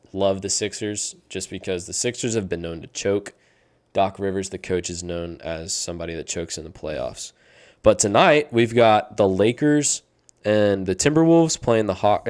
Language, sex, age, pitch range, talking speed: English, male, 20-39, 95-120 Hz, 180 wpm